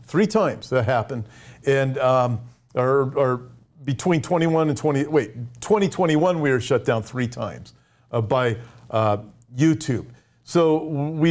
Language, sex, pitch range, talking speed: English, male, 125-160 Hz, 140 wpm